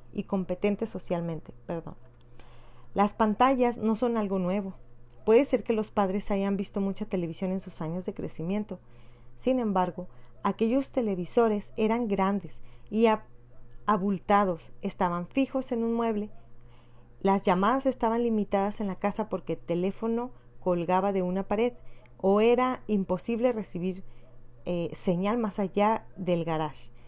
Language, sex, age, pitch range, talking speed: Spanish, female, 40-59, 170-215 Hz, 135 wpm